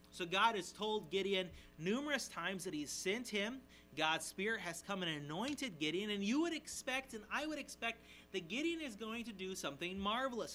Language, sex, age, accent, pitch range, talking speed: English, male, 30-49, American, 140-220 Hz, 195 wpm